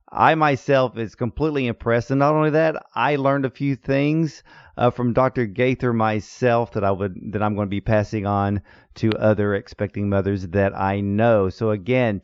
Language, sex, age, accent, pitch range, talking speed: English, male, 40-59, American, 105-140 Hz, 185 wpm